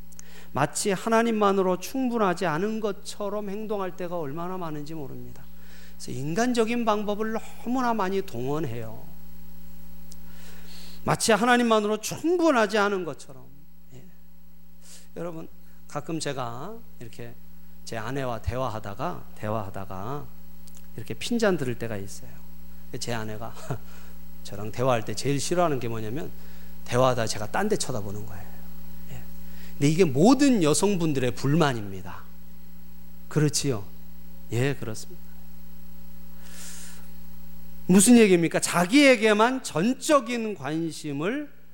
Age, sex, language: 40-59, male, Korean